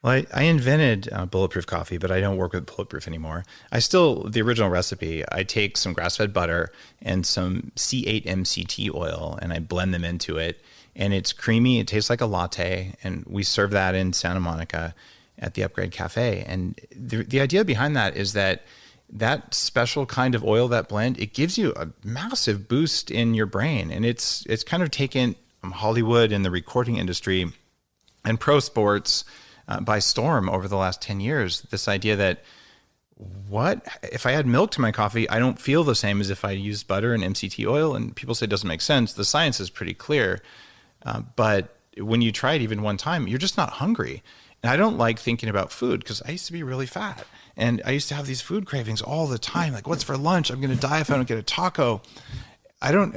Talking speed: 215 wpm